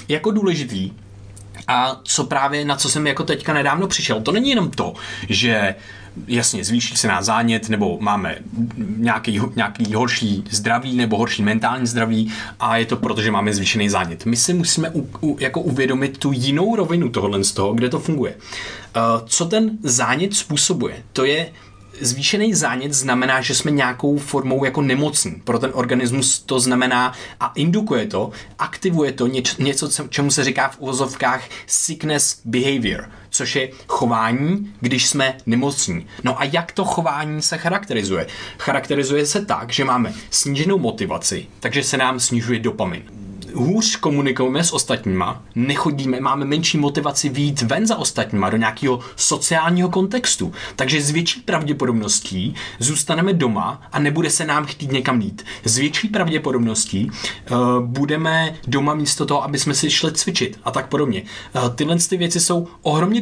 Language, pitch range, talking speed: Czech, 120-155 Hz, 155 wpm